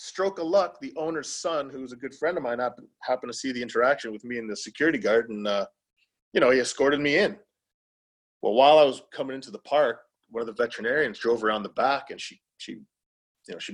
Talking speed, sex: 230 wpm, male